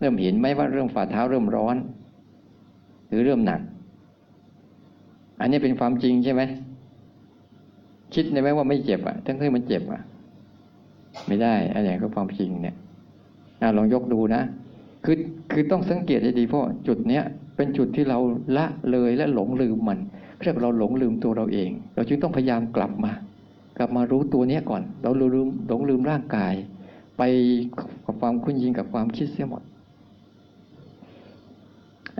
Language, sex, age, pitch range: Thai, male, 60-79, 110-150 Hz